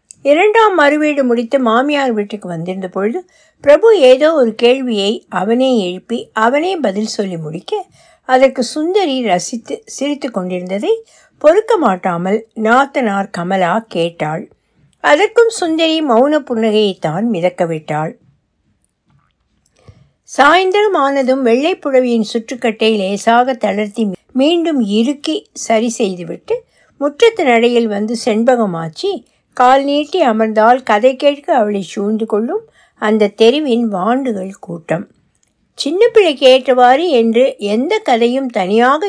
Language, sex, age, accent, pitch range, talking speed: Tamil, female, 60-79, native, 210-290 Hz, 95 wpm